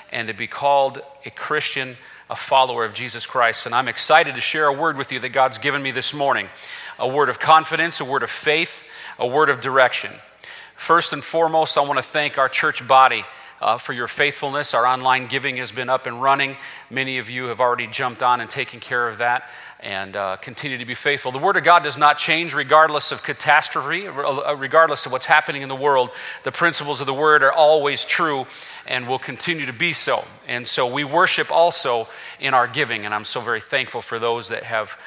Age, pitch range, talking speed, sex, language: 40-59, 130-155 Hz, 215 wpm, male, English